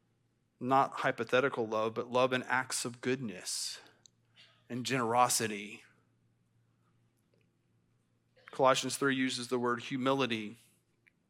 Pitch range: 125-145 Hz